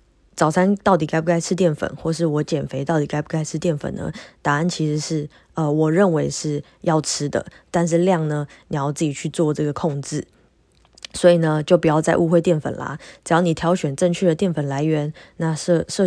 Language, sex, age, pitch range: Chinese, female, 20-39, 150-175 Hz